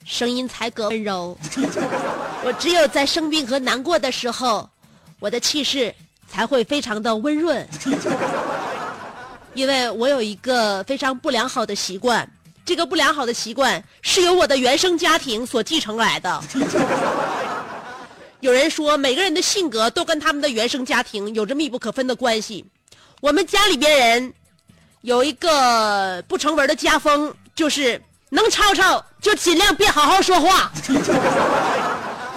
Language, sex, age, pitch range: Chinese, female, 30-49, 250-350 Hz